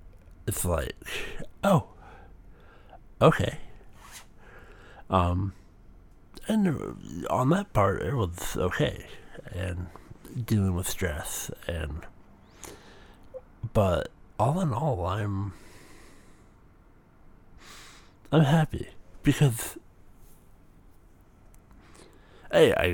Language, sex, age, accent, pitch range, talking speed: English, male, 60-79, American, 90-110 Hz, 70 wpm